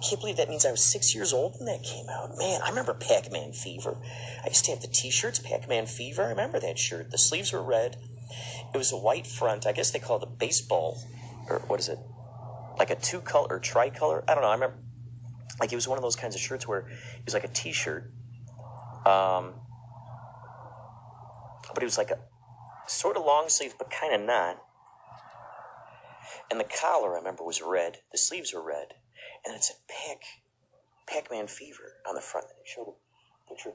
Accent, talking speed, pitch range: American, 200 wpm, 120-130 Hz